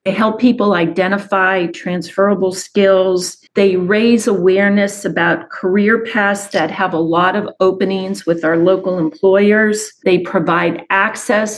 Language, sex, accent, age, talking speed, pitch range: English, female, American, 40-59, 130 wpm, 185-215 Hz